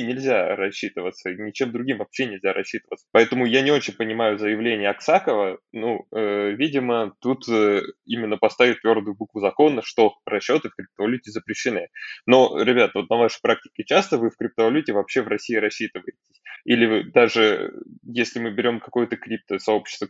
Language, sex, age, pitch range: Russian, male, 20-39, 110-135 Hz